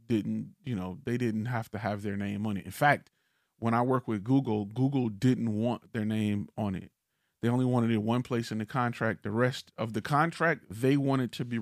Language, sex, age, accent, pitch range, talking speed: English, male, 30-49, American, 110-130 Hz, 230 wpm